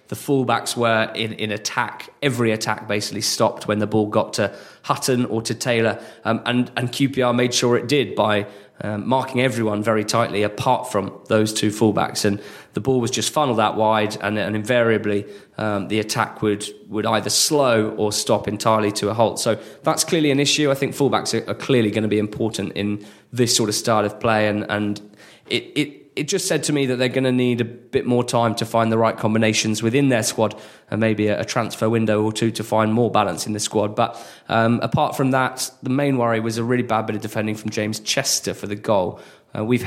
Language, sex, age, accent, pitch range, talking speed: English, male, 20-39, British, 105-125 Hz, 220 wpm